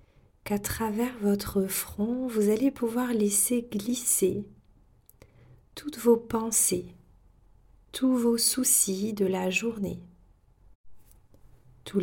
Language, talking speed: French, 95 wpm